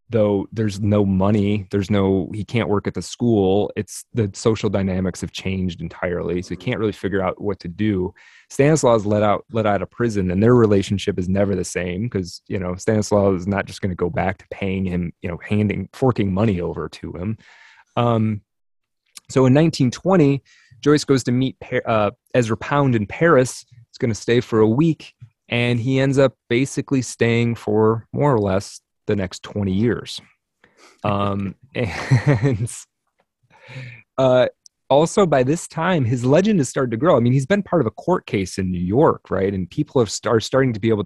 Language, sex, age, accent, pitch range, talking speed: English, male, 30-49, American, 95-125 Hz, 195 wpm